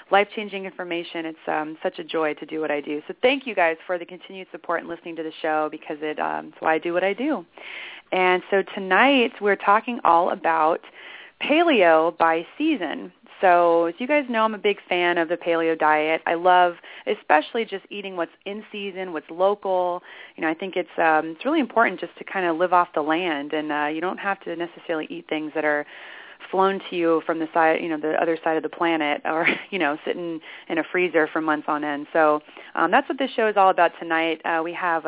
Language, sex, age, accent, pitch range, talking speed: English, female, 30-49, American, 155-190 Hz, 230 wpm